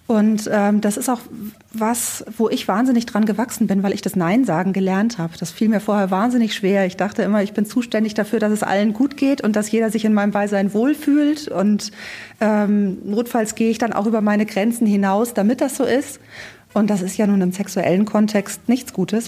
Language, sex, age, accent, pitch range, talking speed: German, female, 30-49, German, 195-230 Hz, 215 wpm